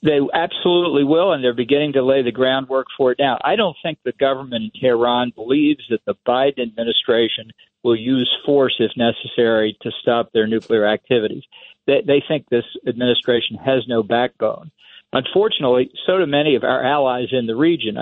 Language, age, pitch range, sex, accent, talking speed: English, 50-69, 115-140 Hz, male, American, 175 wpm